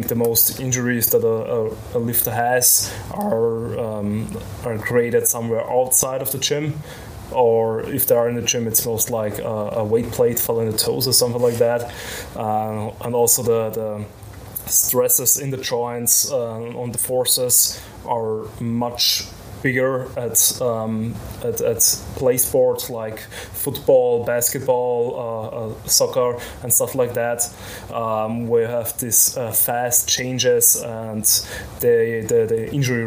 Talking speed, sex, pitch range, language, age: 150 wpm, male, 110-125 Hz, German, 20-39